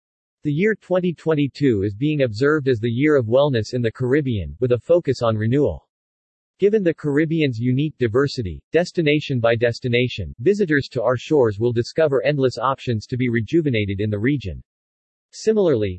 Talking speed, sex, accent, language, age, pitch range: 160 wpm, male, American, English, 40-59, 115-150 Hz